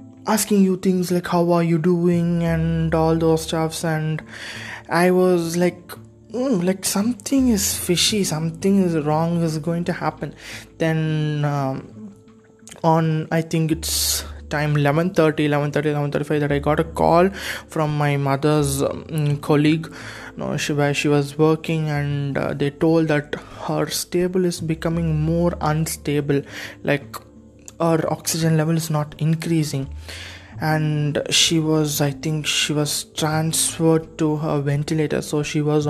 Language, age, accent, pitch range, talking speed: English, 20-39, Indian, 145-170 Hz, 140 wpm